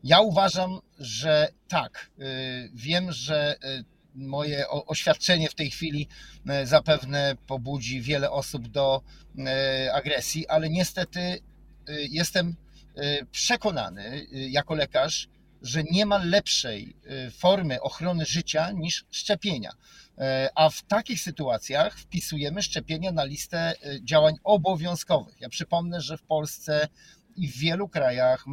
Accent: native